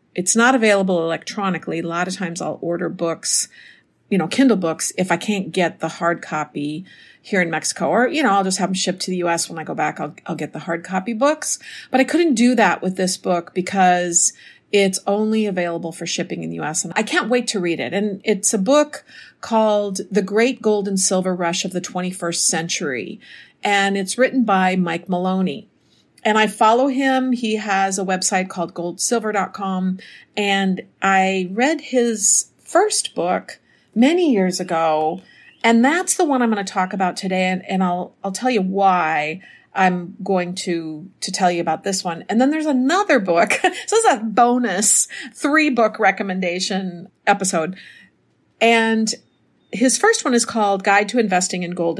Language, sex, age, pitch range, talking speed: English, female, 50-69, 180-230 Hz, 185 wpm